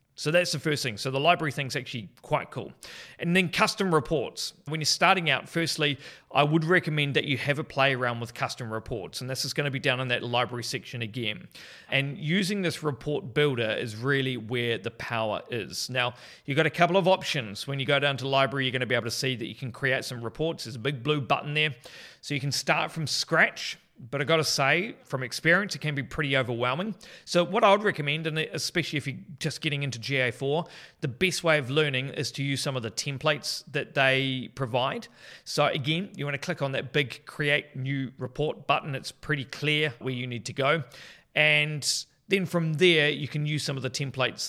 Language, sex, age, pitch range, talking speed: English, male, 30-49, 125-155 Hz, 220 wpm